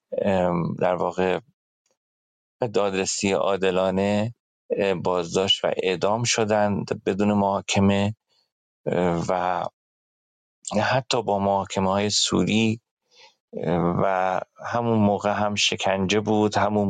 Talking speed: 80 wpm